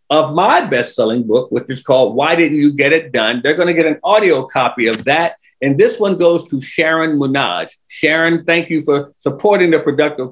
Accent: American